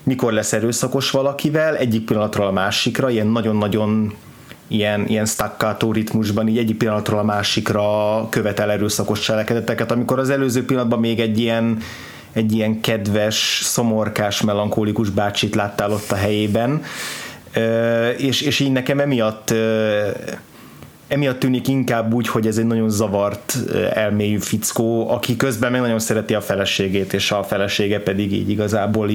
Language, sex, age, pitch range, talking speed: Hungarian, male, 30-49, 105-125 Hz, 140 wpm